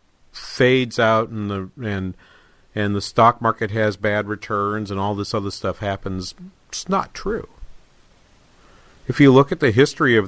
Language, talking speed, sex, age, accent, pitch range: English, 165 wpm, male, 50-69, American, 100-125 Hz